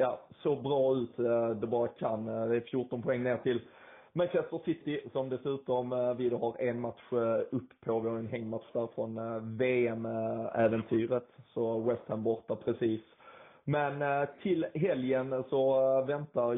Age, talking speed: 20-39, 150 wpm